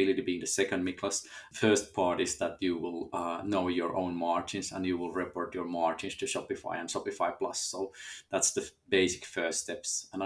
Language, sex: English, male